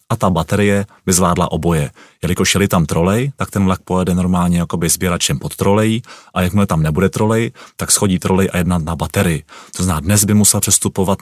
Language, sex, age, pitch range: Czech, male, 30-49, 90-105 Hz